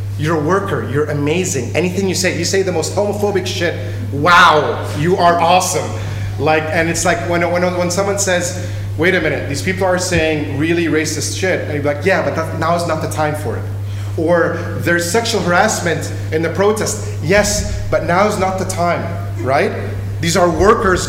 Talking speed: 195 wpm